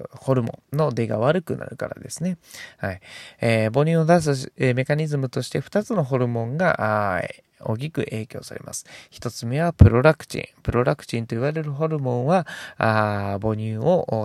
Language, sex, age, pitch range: Japanese, male, 20-39, 110-150 Hz